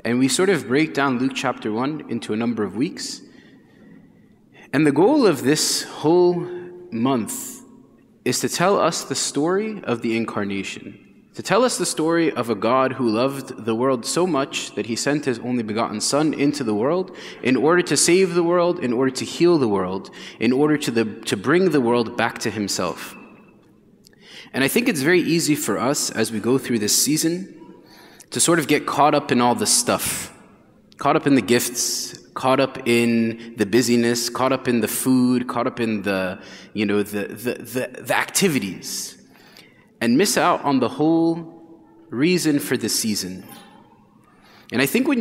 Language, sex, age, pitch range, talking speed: English, male, 20-39, 115-150 Hz, 185 wpm